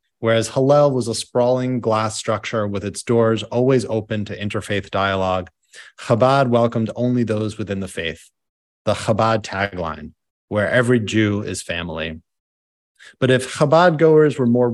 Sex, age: male, 30-49